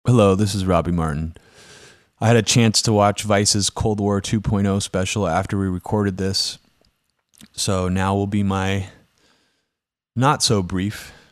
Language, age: English, 30-49